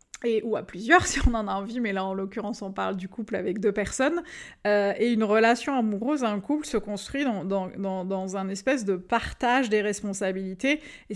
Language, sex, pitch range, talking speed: French, female, 200-255 Hz, 220 wpm